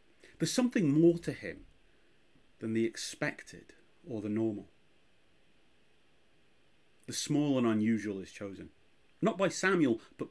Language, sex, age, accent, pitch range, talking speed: English, male, 30-49, British, 110-140 Hz, 120 wpm